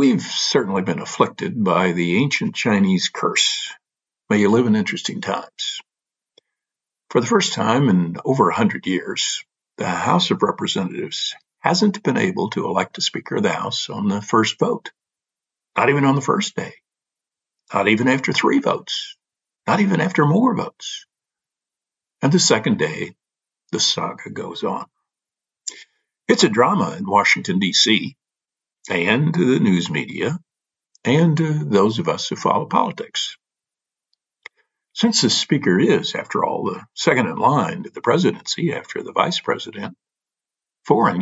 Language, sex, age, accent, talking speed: English, male, 50-69, American, 145 wpm